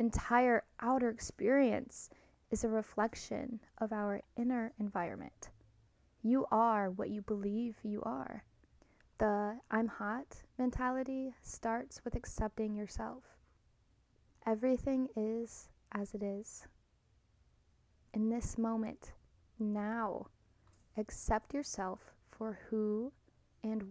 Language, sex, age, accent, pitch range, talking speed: English, female, 10-29, American, 210-235 Hz, 100 wpm